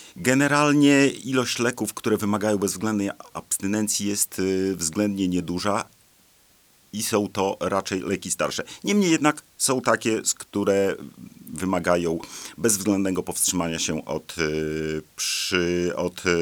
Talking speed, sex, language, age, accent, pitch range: 100 wpm, male, Polish, 40-59, native, 85-105 Hz